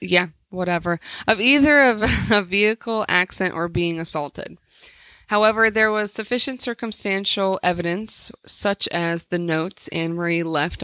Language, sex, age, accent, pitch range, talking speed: English, female, 30-49, American, 180-225 Hz, 125 wpm